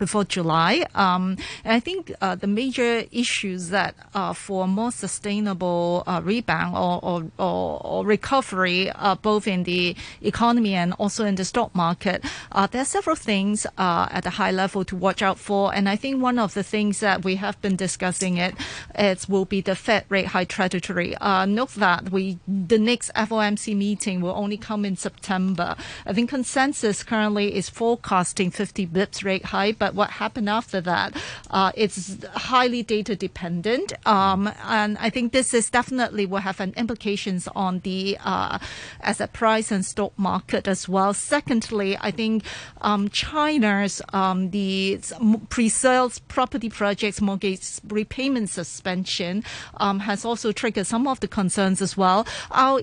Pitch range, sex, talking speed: 190-220 Hz, female, 165 wpm